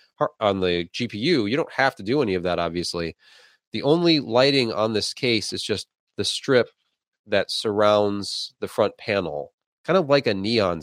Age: 30-49